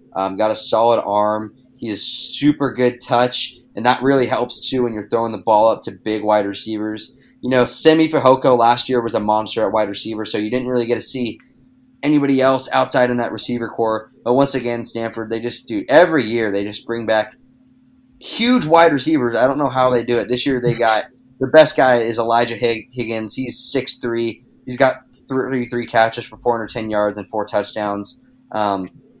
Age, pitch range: 20-39, 105-130 Hz